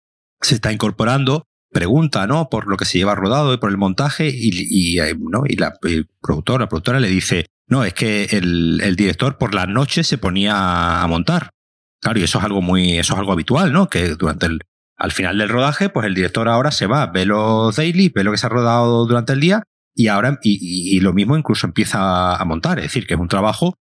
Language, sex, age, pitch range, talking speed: Spanish, male, 30-49, 95-130 Hz, 230 wpm